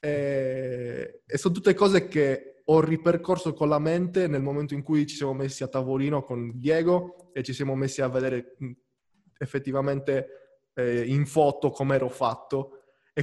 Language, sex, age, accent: Italian, male, 20-39, native